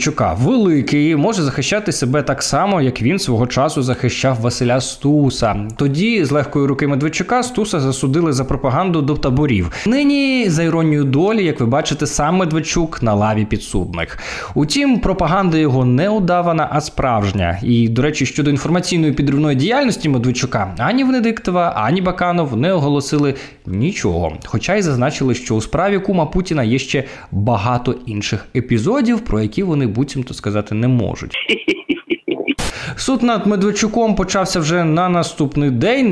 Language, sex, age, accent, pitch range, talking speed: Ukrainian, male, 20-39, native, 125-180 Hz, 145 wpm